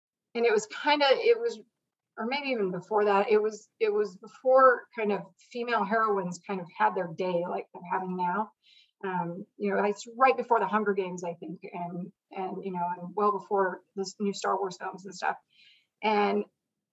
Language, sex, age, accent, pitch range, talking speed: English, female, 30-49, American, 195-230 Hz, 200 wpm